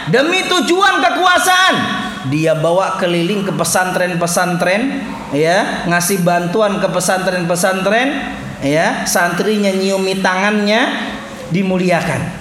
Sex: male